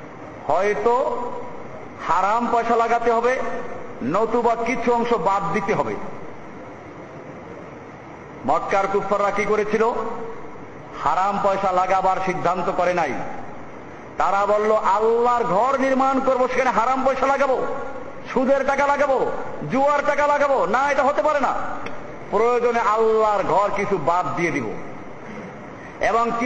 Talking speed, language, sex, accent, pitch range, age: 115 wpm, Bengali, male, native, 195-240 Hz, 50-69